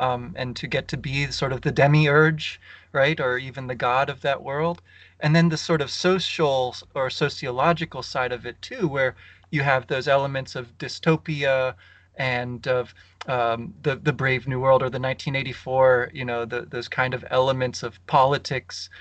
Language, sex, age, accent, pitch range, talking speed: English, male, 30-49, American, 120-150 Hz, 175 wpm